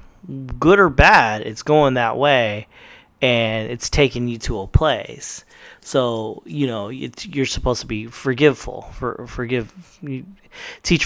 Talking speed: 135 wpm